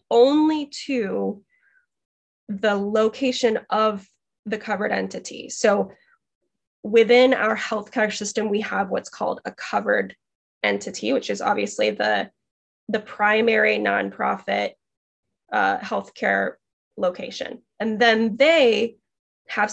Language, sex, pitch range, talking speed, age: English, female, 210-270 Hz, 105 wpm, 10-29